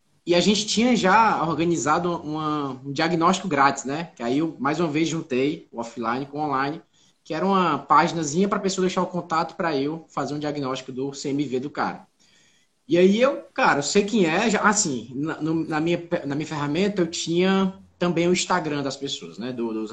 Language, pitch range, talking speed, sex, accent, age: Portuguese, 150-205 Hz, 200 wpm, male, Brazilian, 20-39